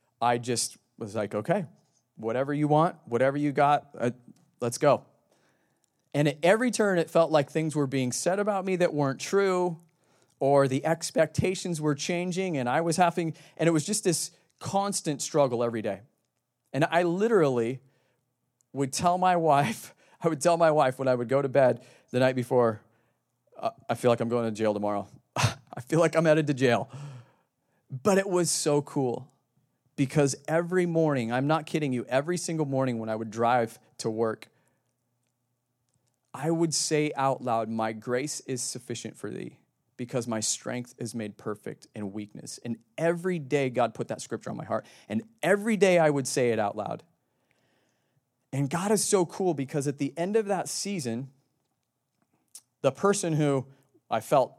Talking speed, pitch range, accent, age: 175 wpm, 125-165 Hz, American, 40-59